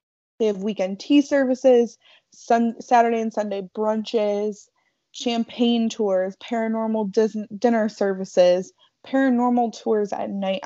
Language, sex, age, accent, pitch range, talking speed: English, female, 20-39, American, 195-235 Hz, 100 wpm